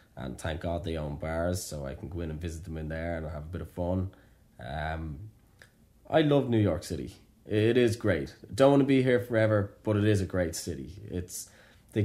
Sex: male